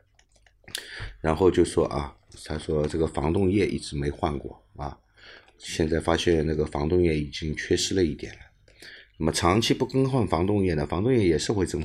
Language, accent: Chinese, native